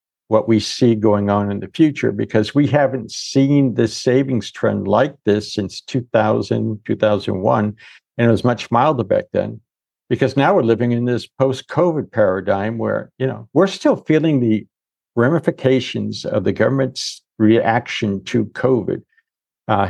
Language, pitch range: English, 110-130 Hz